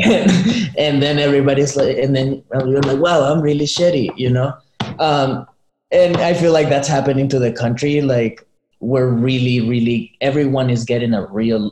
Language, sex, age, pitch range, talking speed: English, male, 20-39, 110-140 Hz, 170 wpm